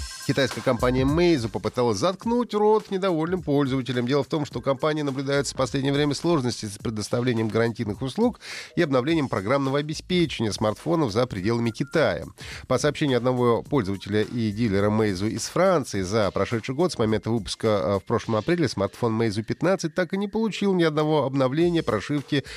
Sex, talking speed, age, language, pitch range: male, 160 wpm, 30-49, Russian, 115-160 Hz